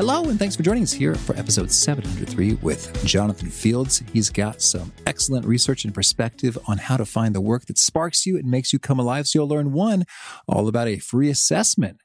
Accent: American